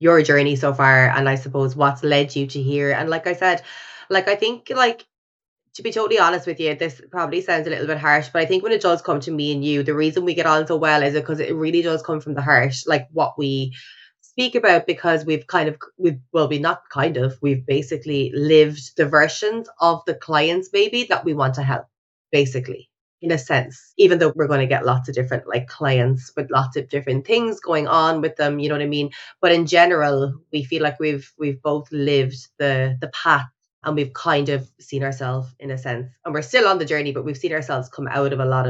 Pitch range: 135-165 Hz